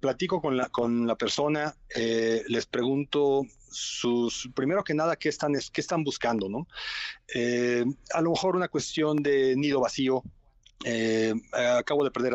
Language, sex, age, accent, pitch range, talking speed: Spanish, male, 40-59, Mexican, 115-145 Hz, 155 wpm